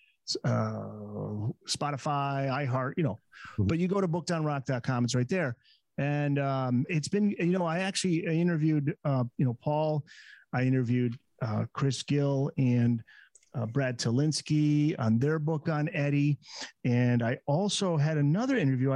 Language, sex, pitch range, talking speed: English, male, 125-160 Hz, 145 wpm